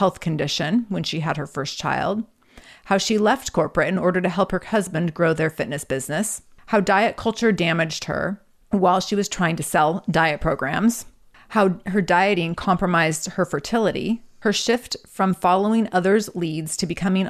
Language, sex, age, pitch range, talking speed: English, female, 30-49, 165-205 Hz, 170 wpm